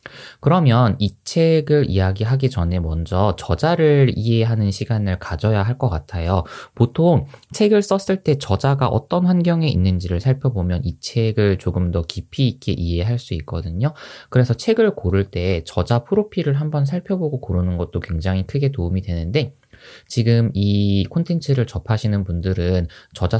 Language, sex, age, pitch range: Korean, male, 20-39, 95-145 Hz